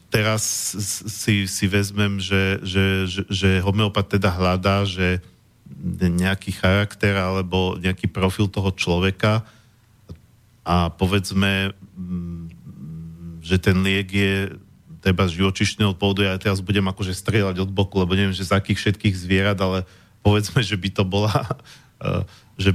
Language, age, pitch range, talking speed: Slovak, 40-59, 95-105 Hz, 130 wpm